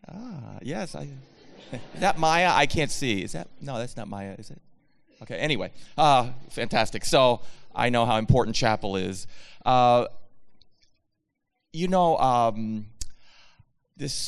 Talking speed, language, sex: 135 wpm, English, male